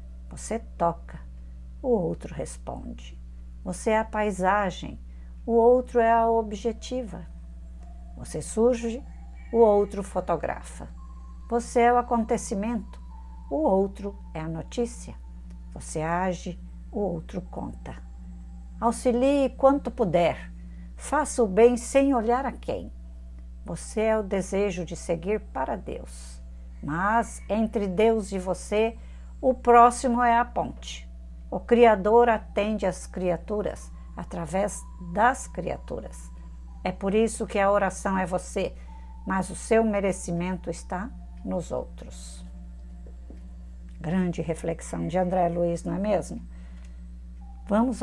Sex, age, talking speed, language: female, 60-79, 115 wpm, Portuguese